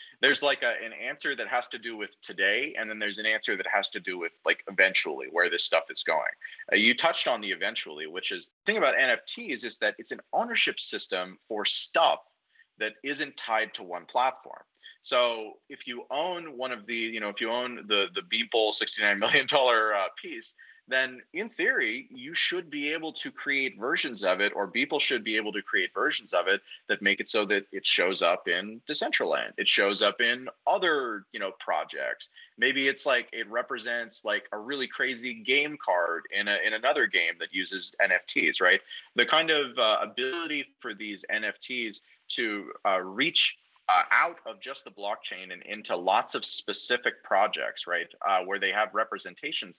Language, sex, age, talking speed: English, male, 30-49, 200 wpm